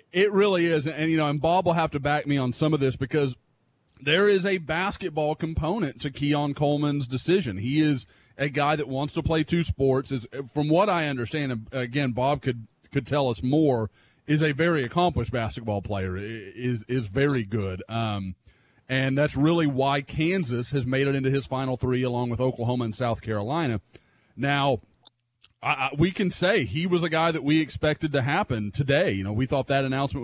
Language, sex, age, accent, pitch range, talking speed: English, male, 30-49, American, 130-160 Hz, 195 wpm